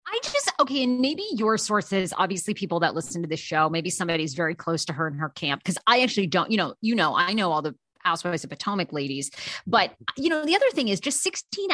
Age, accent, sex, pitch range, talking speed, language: 30-49, American, female, 175-285 Hz, 250 wpm, English